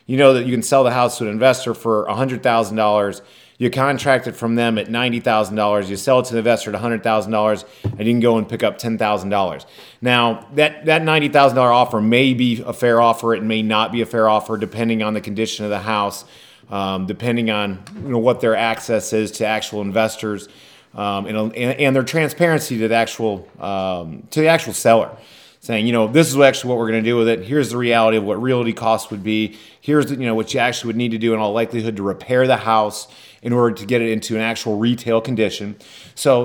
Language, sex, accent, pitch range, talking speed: English, male, American, 110-130 Hz, 225 wpm